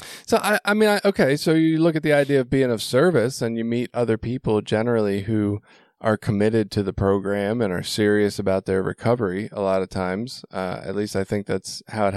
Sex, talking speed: male, 225 wpm